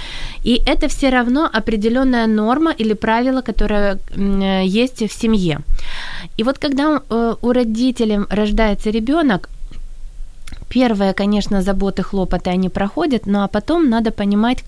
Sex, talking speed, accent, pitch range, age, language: female, 125 wpm, native, 195-235 Hz, 20-39, Ukrainian